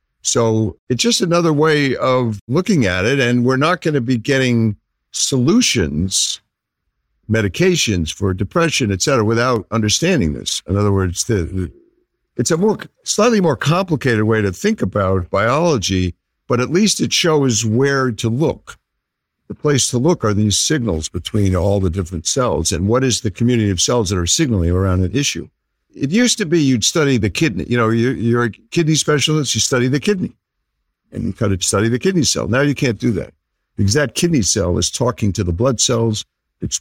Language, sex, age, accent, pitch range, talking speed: English, male, 60-79, American, 95-140 Hz, 185 wpm